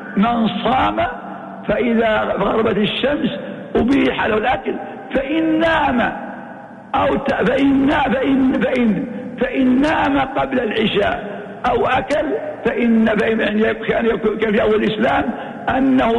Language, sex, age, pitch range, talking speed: Arabic, male, 60-79, 210-255 Hz, 100 wpm